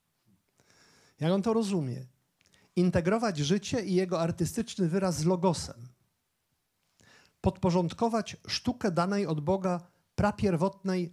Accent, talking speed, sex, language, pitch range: native, 95 wpm, male, Polish, 155-195 Hz